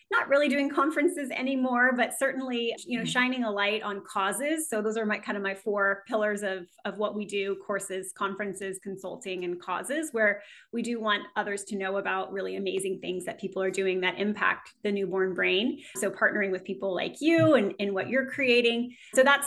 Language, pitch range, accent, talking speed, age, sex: English, 190-230 Hz, American, 205 wpm, 30-49, female